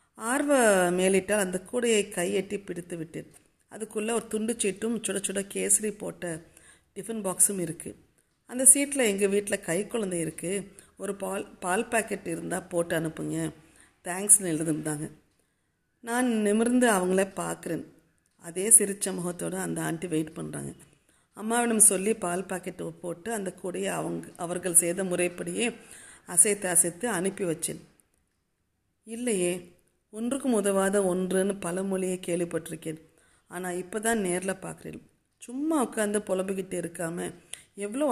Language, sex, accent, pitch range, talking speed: Tamil, female, native, 170-210 Hz, 120 wpm